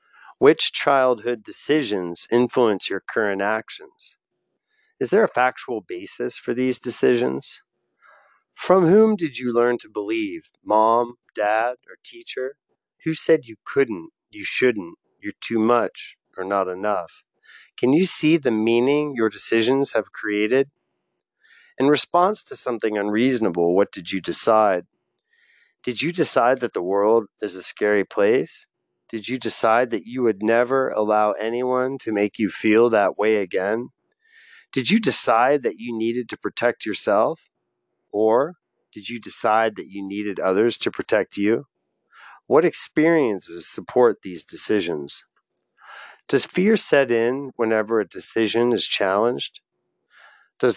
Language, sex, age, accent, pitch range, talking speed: English, male, 30-49, American, 110-160 Hz, 140 wpm